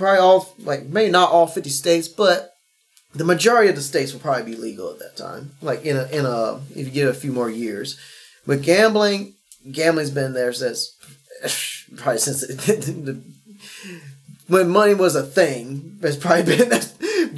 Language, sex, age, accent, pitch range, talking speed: English, male, 20-39, American, 140-180 Hz, 165 wpm